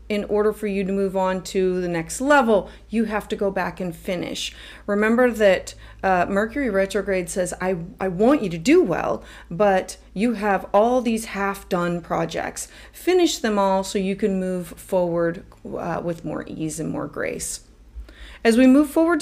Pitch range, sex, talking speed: 185-245 Hz, female, 180 wpm